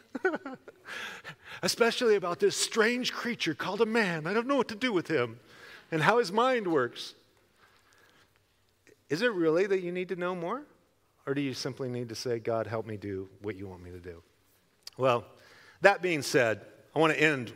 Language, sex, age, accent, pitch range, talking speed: English, male, 40-59, American, 120-185 Hz, 190 wpm